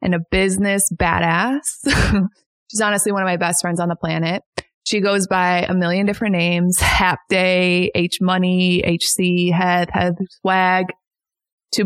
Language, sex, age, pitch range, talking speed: English, female, 20-39, 175-205 Hz, 145 wpm